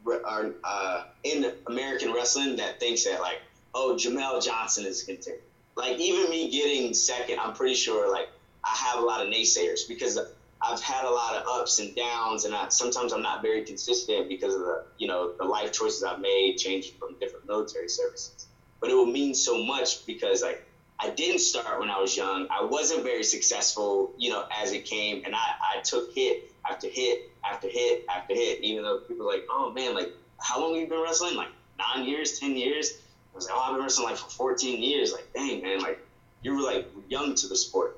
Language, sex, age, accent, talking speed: English, male, 20-39, American, 215 wpm